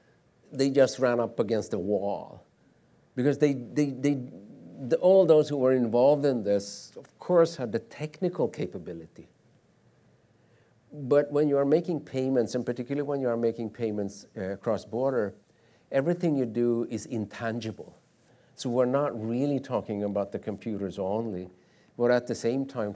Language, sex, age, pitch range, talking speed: English, male, 50-69, 100-135 Hz, 155 wpm